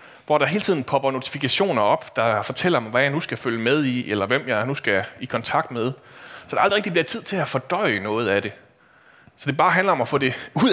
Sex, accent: male, native